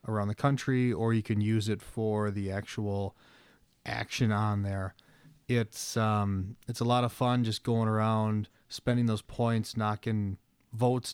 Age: 20-39